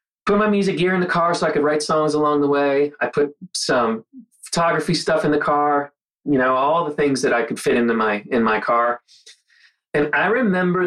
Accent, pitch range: American, 125-170 Hz